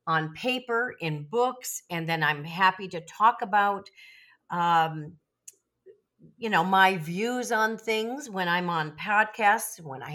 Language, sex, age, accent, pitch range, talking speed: English, female, 50-69, American, 170-235 Hz, 140 wpm